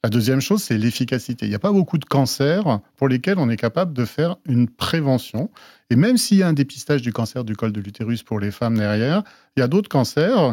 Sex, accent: male, French